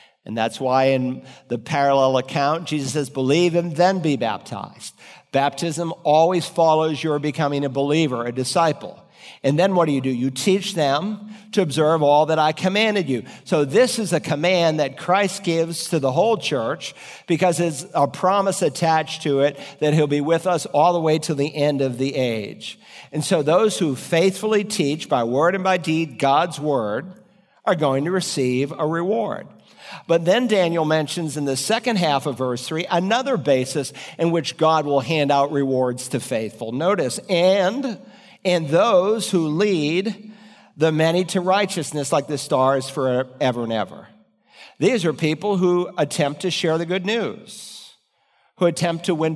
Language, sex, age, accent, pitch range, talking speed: English, male, 50-69, American, 140-180 Hz, 175 wpm